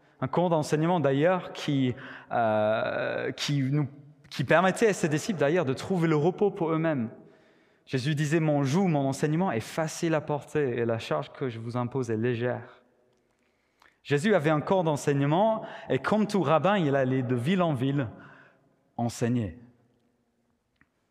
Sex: male